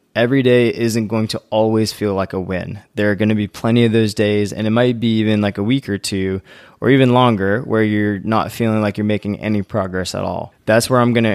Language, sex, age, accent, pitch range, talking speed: English, male, 20-39, American, 100-120 Hz, 245 wpm